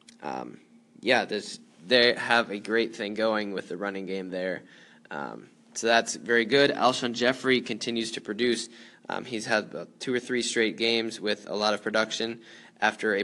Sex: male